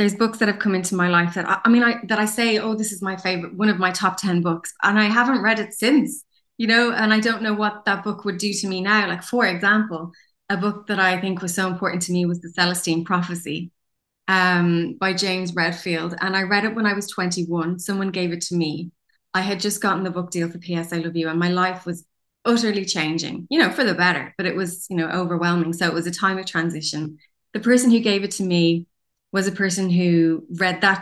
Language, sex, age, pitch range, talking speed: English, female, 20-39, 170-205 Hz, 250 wpm